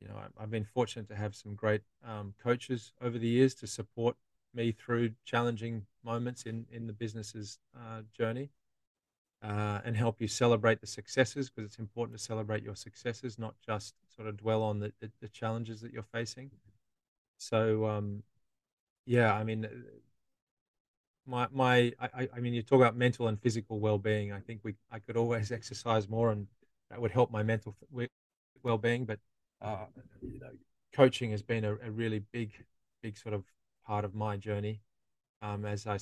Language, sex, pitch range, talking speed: English, male, 105-115 Hz, 175 wpm